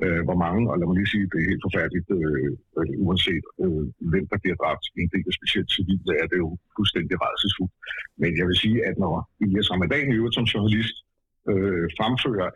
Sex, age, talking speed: male, 60-79, 210 wpm